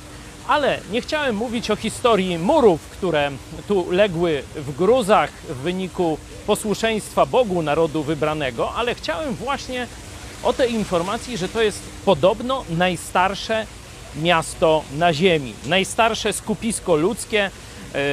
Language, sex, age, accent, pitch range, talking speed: Polish, male, 40-59, native, 160-225 Hz, 115 wpm